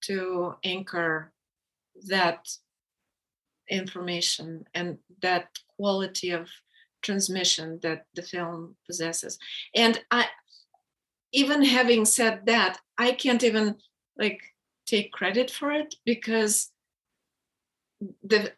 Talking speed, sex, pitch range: 95 wpm, female, 185-220 Hz